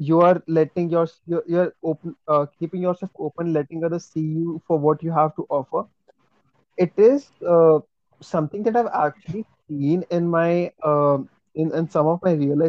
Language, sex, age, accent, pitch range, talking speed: Hindi, male, 30-49, native, 155-185 Hz, 185 wpm